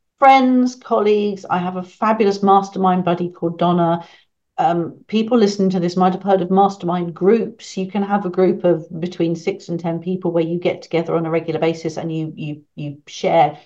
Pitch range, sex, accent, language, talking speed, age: 165-195 Hz, female, British, English, 200 wpm, 50-69